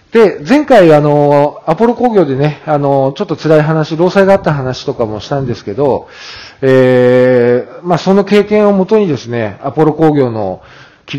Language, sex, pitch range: Japanese, male, 120-165 Hz